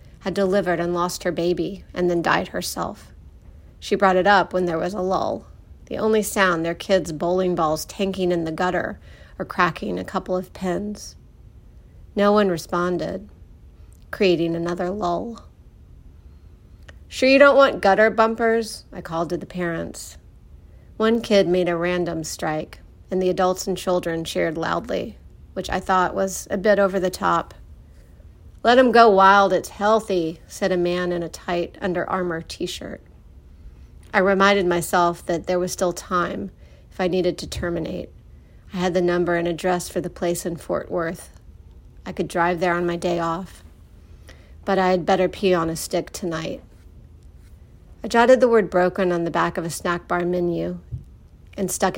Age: 40-59